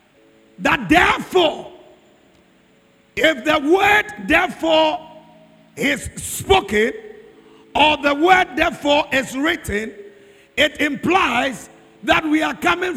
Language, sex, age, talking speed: English, male, 50-69, 95 wpm